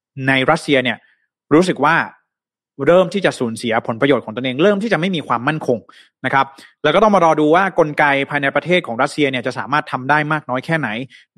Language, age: Thai, 20-39